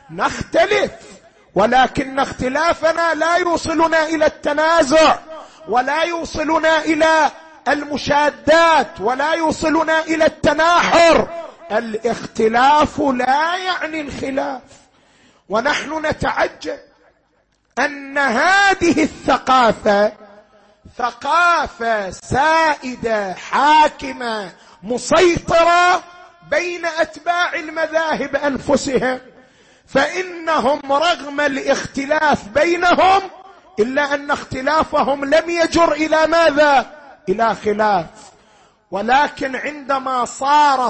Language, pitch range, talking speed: Arabic, 265-325 Hz, 70 wpm